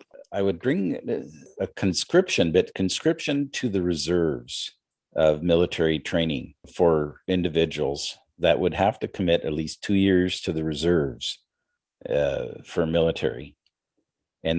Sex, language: male, English